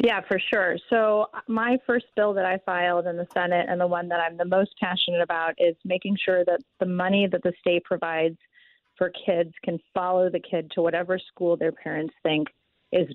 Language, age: English, 30-49